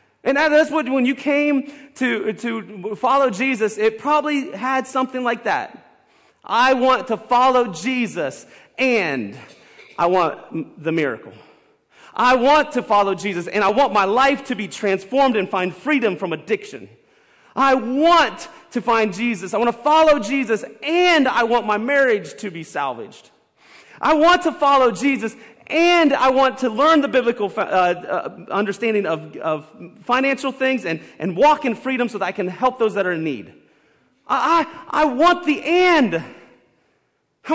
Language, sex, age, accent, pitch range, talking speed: English, male, 30-49, American, 205-285 Hz, 165 wpm